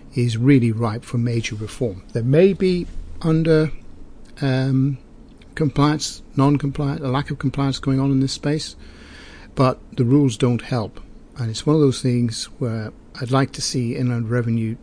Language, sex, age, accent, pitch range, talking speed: English, male, 50-69, British, 115-145 Hz, 160 wpm